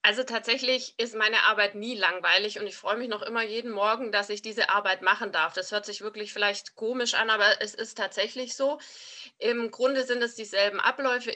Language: German